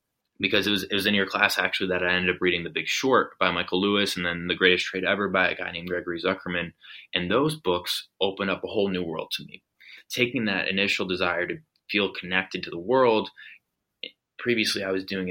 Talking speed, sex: 225 wpm, male